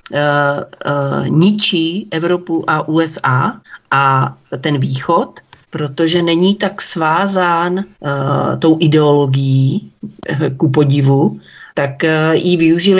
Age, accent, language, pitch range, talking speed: 40-59, native, Czech, 155-185 Hz, 100 wpm